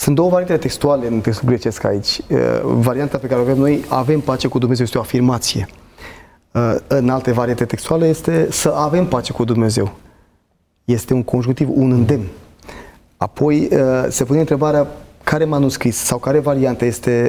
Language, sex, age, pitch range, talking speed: Romanian, male, 30-49, 120-150 Hz, 160 wpm